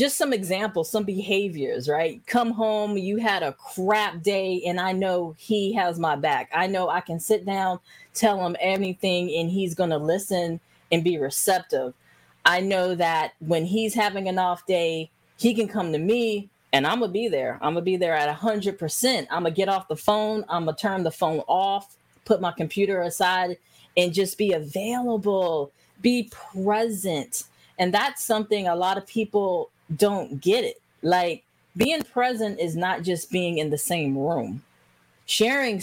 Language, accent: English, American